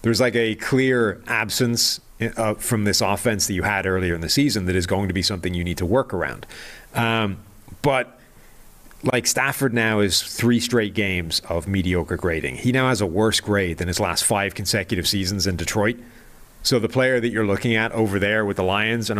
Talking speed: 205 wpm